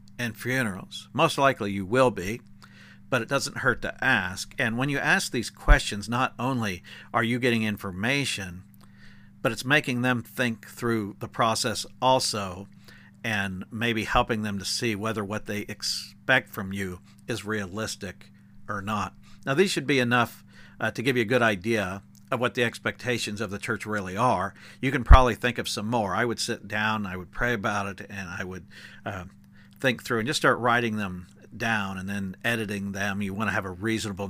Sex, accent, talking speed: male, American, 190 wpm